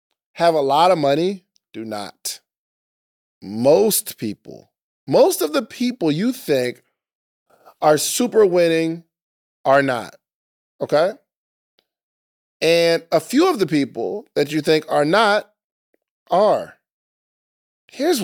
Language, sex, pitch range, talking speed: English, male, 130-185 Hz, 110 wpm